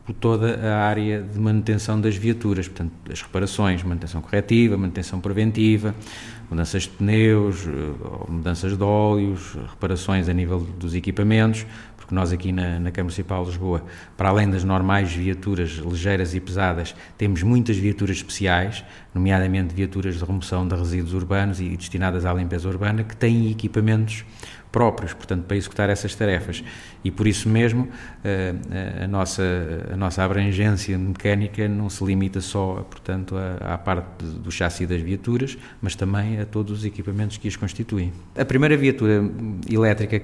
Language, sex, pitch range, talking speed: Portuguese, male, 95-110 Hz, 150 wpm